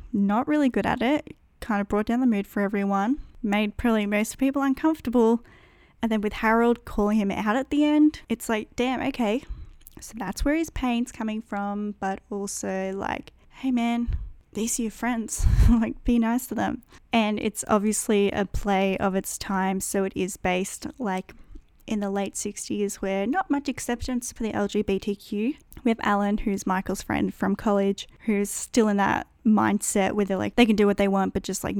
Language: English